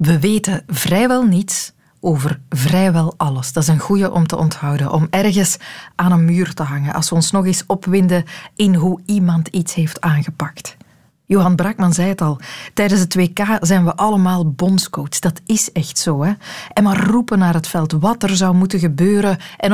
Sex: female